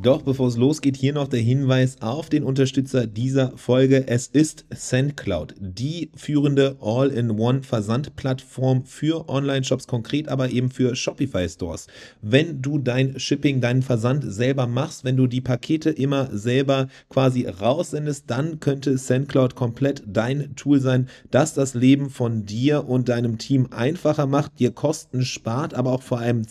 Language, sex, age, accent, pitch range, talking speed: English, male, 40-59, German, 125-145 Hz, 150 wpm